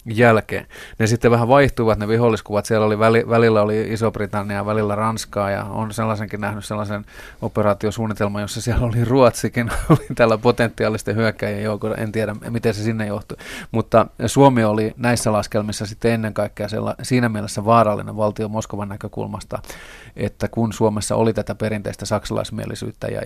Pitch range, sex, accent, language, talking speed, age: 105-115 Hz, male, native, Finnish, 155 wpm, 30-49